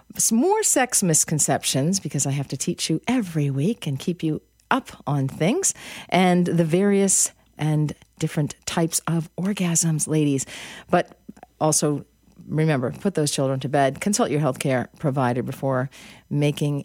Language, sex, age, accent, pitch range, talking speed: English, female, 40-59, American, 140-185 Hz, 145 wpm